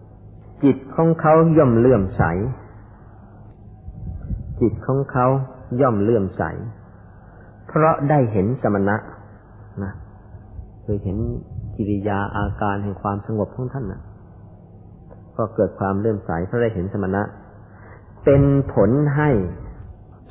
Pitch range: 100-115 Hz